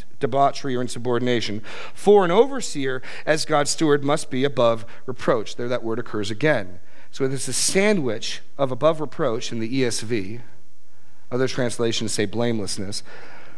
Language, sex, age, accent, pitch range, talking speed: English, male, 40-59, American, 115-155 Hz, 140 wpm